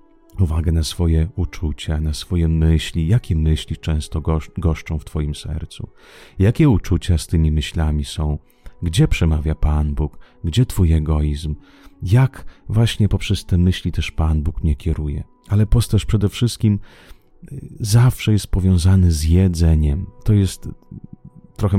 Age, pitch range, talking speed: 30-49, 80-95 Hz, 135 wpm